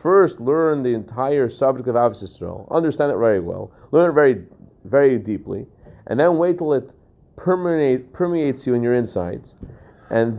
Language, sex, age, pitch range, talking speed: English, male, 30-49, 115-150 Hz, 160 wpm